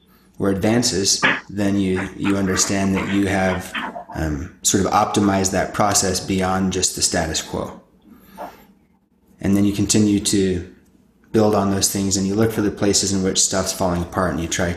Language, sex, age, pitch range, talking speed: English, male, 20-39, 95-110 Hz, 170 wpm